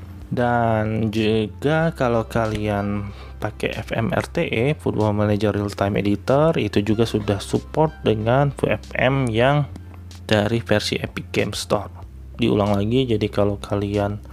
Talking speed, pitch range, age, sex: 115 wpm, 100-115 Hz, 20-39, male